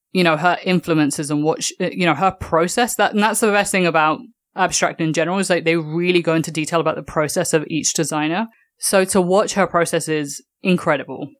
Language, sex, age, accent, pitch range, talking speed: English, female, 20-39, British, 155-180 Hz, 210 wpm